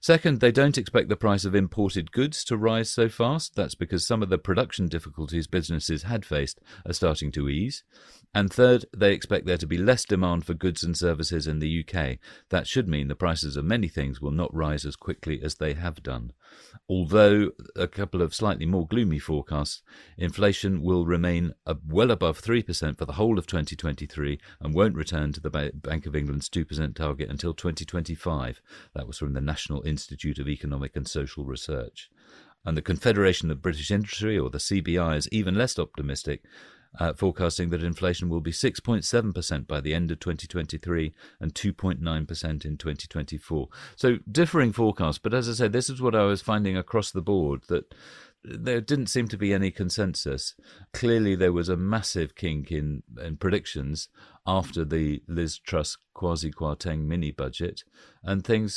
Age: 40-59